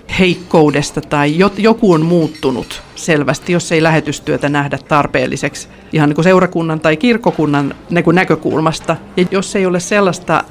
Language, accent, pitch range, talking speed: Finnish, native, 140-170 Hz, 125 wpm